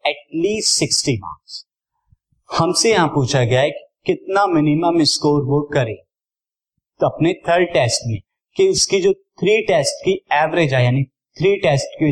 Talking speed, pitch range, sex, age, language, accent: 135 wpm, 120-160 Hz, male, 30-49, Hindi, native